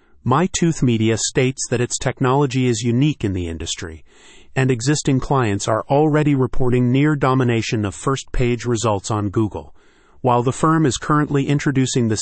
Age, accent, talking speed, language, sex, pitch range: 40-59, American, 145 wpm, English, male, 105-135 Hz